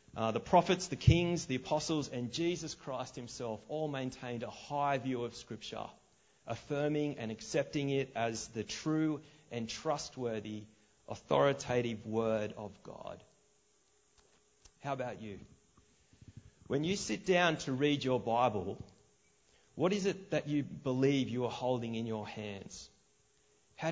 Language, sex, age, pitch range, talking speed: English, male, 30-49, 110-140 Hz, 140 wpm